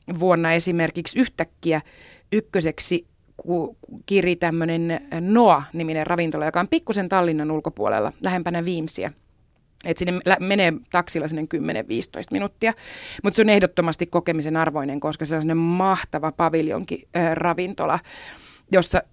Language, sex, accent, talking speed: Finnish, female, native, 115 wpm